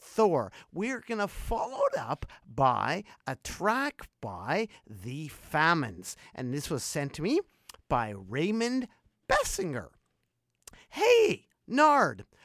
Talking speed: 110 wpm